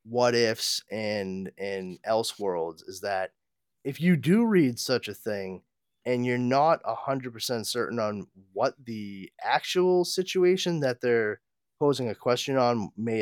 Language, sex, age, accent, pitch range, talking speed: English, male, 20-39, American, 115-160 Hz, 155 wpm